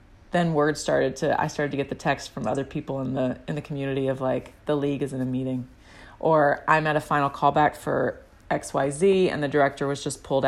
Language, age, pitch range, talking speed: English, 30-49, 135-170 Hz, 230 wpm